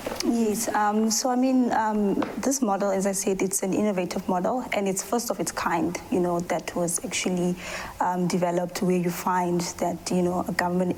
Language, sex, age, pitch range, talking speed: English, female, 20-39, 180-205 Hz, 195 wpm